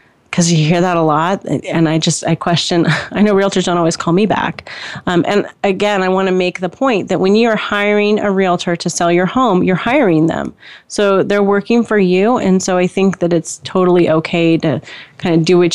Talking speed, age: 225 wpm, 30-49